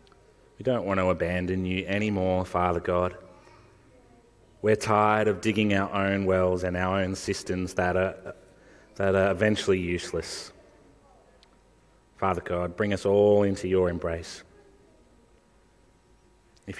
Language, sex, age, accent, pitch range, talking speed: English, male, 30-49, Australian, 90-110 Hz, 120 wpm